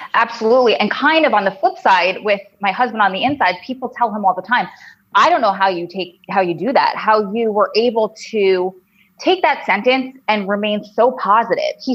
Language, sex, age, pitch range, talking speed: English, female, 20-39, 190-245 Hz, 215 wpm